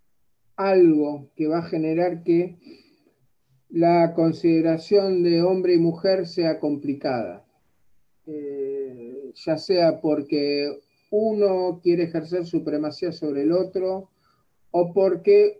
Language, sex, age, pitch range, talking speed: Spanish, male, 50-69, 155-210 Hz, 105 wpm